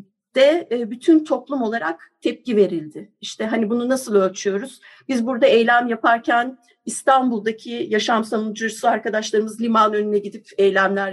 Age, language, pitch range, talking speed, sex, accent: 50-69, Turkish, 200-265 Hz, 125 wpm, female, native